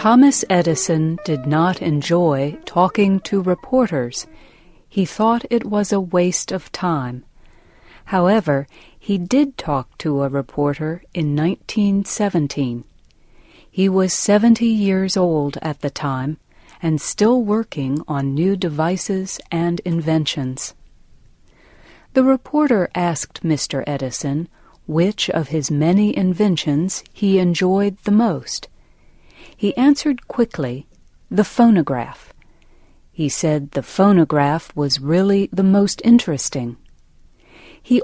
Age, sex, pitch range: 40-59, female, 150-200 Hz